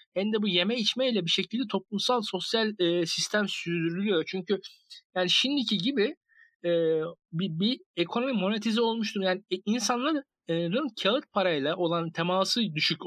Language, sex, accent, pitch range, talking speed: Turkish, male, native, 170-225 Hz, 140 wpm